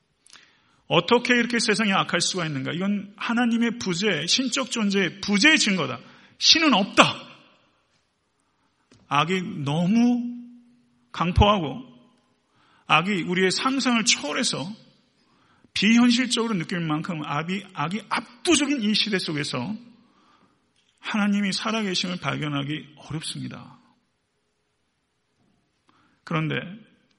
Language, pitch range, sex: Korean, 160-215 Hz, male